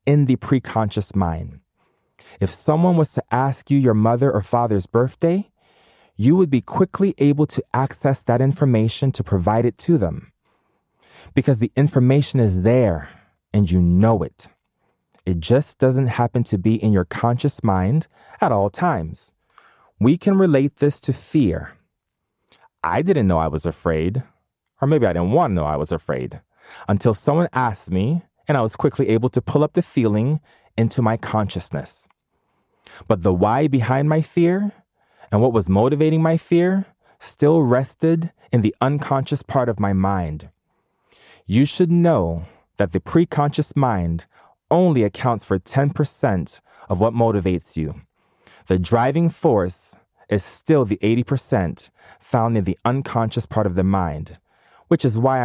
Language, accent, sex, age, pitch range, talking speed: English, American, male, 30-49, 100-140 Hz, 155 wpm